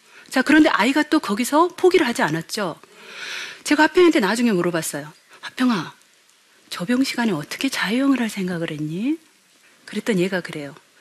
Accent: native